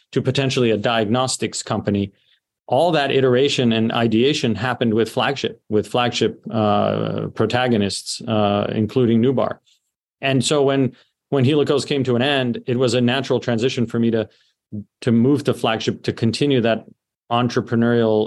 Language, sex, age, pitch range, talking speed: English, male, 40-59, 110-125 Hz, 150 wpm